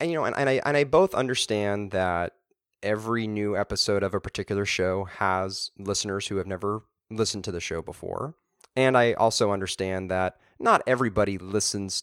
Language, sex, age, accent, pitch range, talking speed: English, male, 30-49, American, 95-110 Hz, 170 wpm